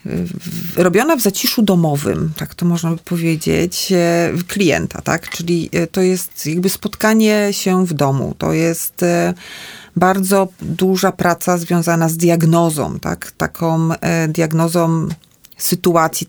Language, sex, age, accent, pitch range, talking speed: Polish, female, 40-59, native, 170-200 Hz, 115 wpm